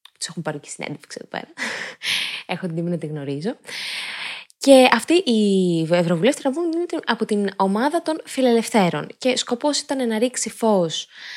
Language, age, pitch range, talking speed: Greek, 20-39, 180-255 Hz, 150 wpm